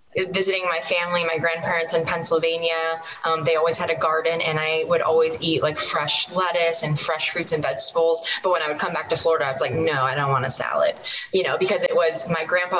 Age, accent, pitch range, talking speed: 20-39, American, 155-180 Hz, 235 wpm